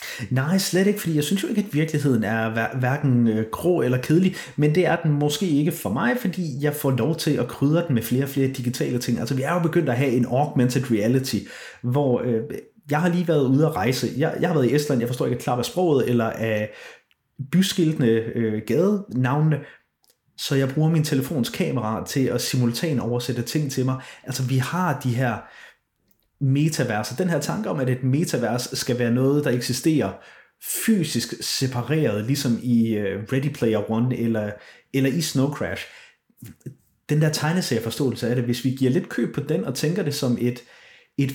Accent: native